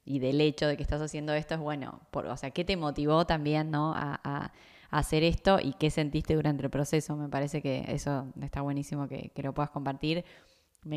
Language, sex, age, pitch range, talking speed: Spanish, female, 10-29, 145-165 Hz, 225 wpm